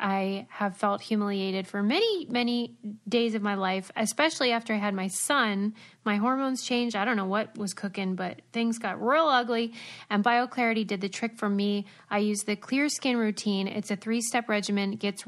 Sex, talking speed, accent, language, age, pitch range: female, 195 wpm, American, English, 10-29, 200-235 Hz